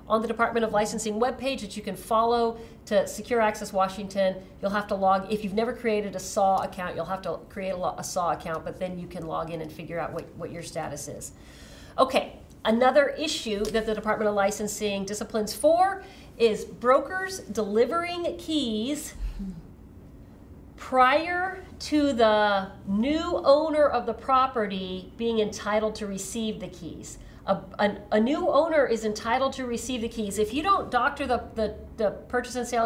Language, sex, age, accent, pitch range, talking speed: English, female, 40-59, American, 195-250 Hz, 175 wpm